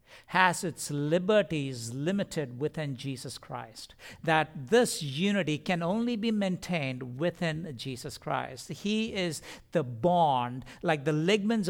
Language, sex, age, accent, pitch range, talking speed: English, male, 60-79, Indian, 120-165 Hz, 125 wpm